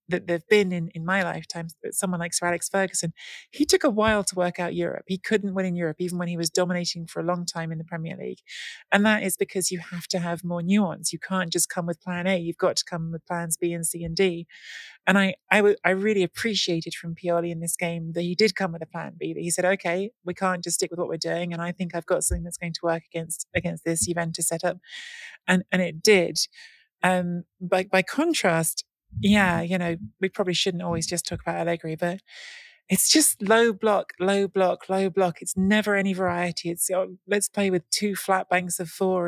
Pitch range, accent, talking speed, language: 170-195 Hz, British, 240 wpm, English